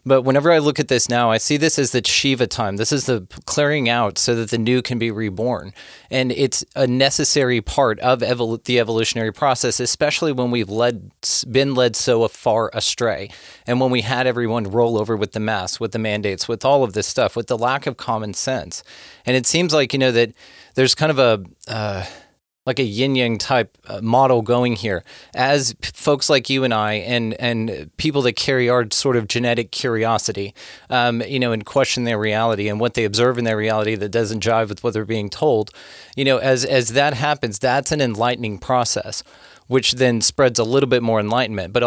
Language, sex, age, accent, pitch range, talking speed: English, male, 30-49, American, 110-130 Hz, 210 wpm